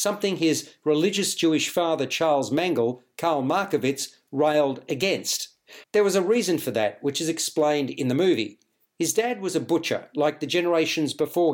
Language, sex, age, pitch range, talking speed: English, male, 50-69, 145-175 Hz, 165 wpm